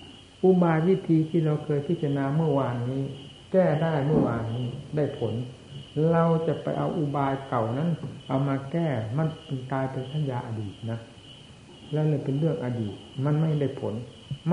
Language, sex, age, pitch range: Thai, male, 60-79, 120-155 Hz